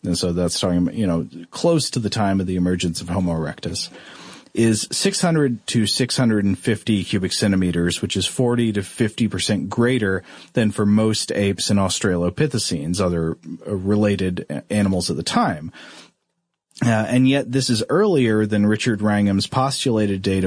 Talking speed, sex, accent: 150 wpm, male, American